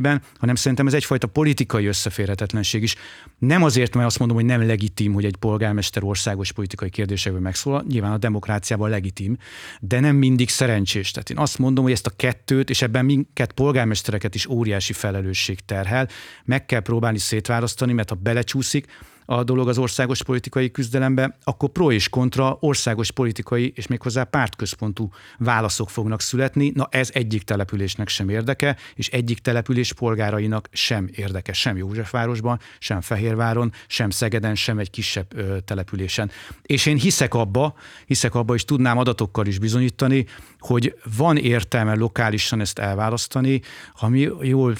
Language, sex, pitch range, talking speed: Hungarian, male, 105-130 Hz, 150 wpm